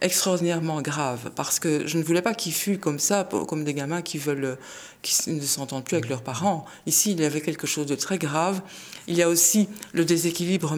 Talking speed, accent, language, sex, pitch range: 215 wpm, French, French, female, 145-185 Hz